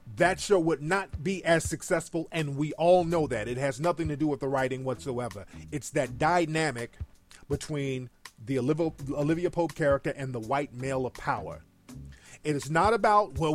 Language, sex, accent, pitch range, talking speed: English, male, American, 135-175 Hz, 175 wpm